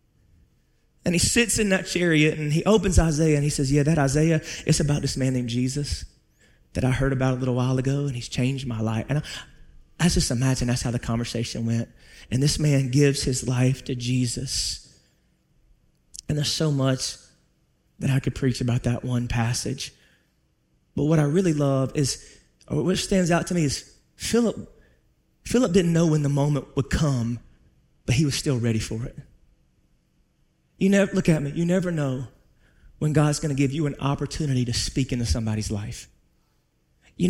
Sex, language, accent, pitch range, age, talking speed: male, English, American, 120-160 Hz, 30-49, 185 wpm